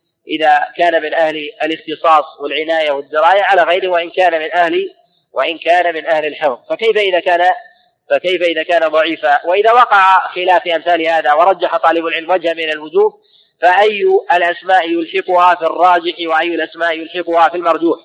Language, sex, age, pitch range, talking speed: Arabic, male, 30-49, 165-190 Hz, 155 wpm